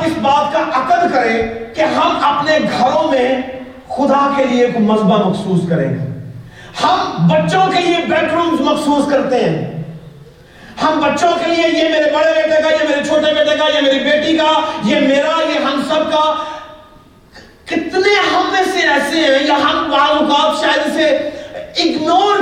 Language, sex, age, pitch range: Urdu, male, 40-59, 235-320 Hz